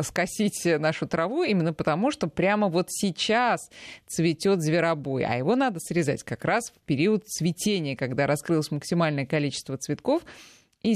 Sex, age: female, 20-39